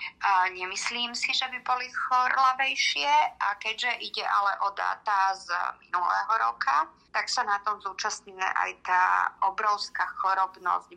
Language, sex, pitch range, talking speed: Slovak, female, 180-195 Hz, 135 wpm